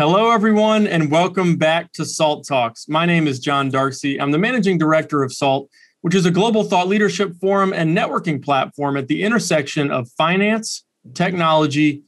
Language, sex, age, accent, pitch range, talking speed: English, male, 30-49, American, 140-185 Hz, 175 wpm